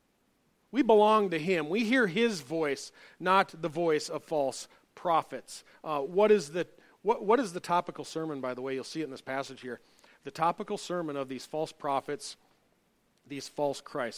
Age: 40-59